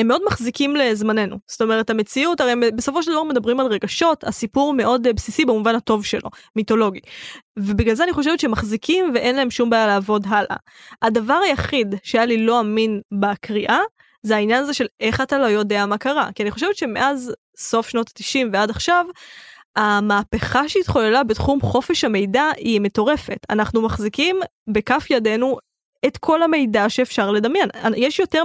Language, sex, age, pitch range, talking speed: Hebrew, female, 10-29, 215-270 Hz, 160 wpm